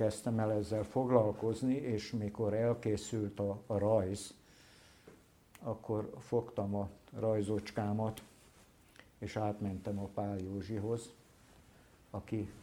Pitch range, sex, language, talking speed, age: 100-120 Hz, male, Hungarian, 95 wpm, 60-79